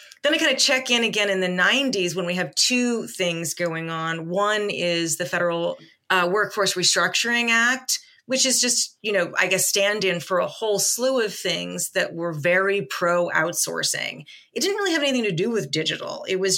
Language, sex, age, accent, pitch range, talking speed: English, female, 30-49, American, 175-215 Hz, 200 wpm